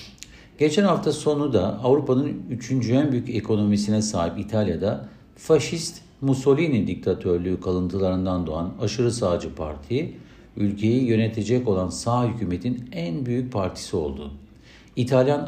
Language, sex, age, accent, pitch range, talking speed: Turkish, male, 60-79, native, 100-130 Hz, 110 wpm